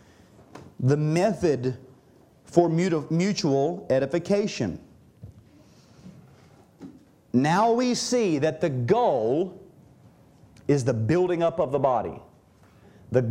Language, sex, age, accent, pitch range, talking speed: English, male, 40-59, American, 155-210 Hz, 85 wpm